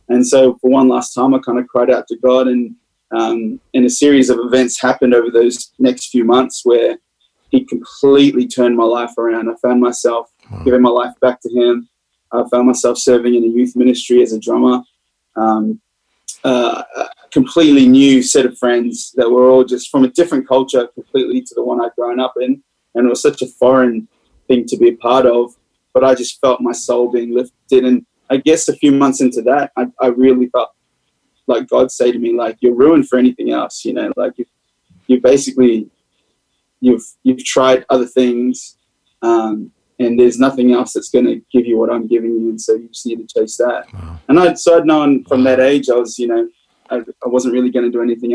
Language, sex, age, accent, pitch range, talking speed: English, male, 20-39, Australian, 120-130 Hz, 210 wpm